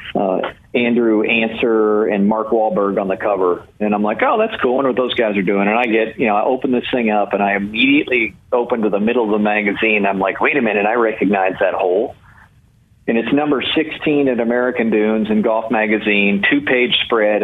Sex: male